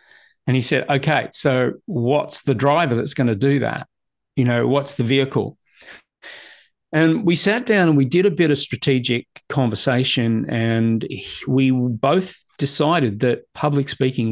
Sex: male